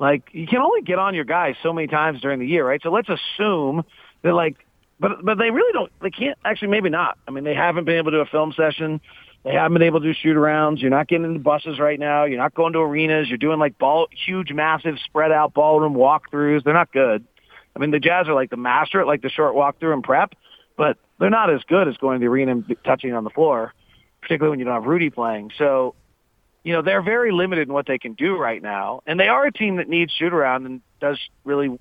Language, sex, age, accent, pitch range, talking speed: English, male, 40-59, American, 130-175 Hz, 260 wpm